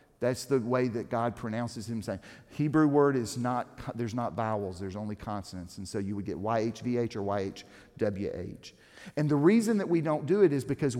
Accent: American